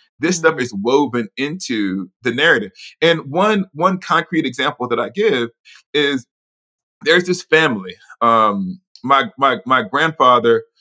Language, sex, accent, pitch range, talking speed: English, male, American, 120-180 Hz, 135 wpm